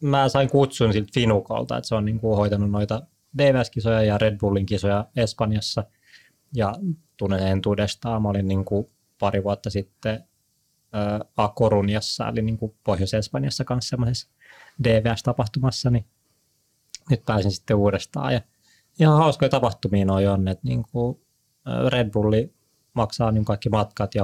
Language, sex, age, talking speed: Finnish, male, 20-39, 140 wpm